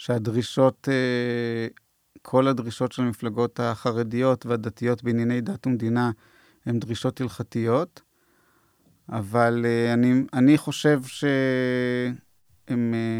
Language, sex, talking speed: Hebrew, male, 80 wpm